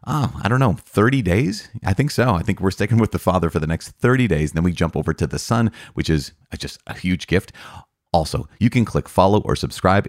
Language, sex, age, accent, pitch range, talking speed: English, male, 30-49, American, 80-105 Hz, 250 wpm